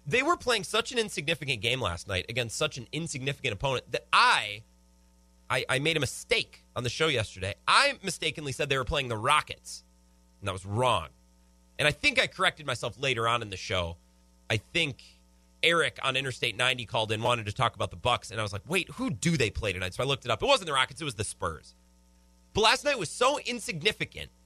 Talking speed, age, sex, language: 225 wpm, 30-49, male, English